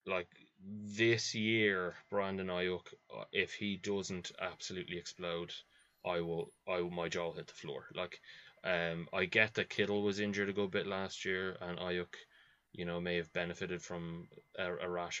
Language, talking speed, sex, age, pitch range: English, 175 wpm, male, 20-39, 90-100 Hz